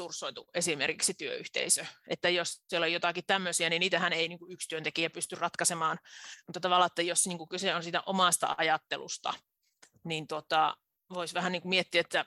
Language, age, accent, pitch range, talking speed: Finnish, 30-49, native, 175-215 Hz, 150 wpm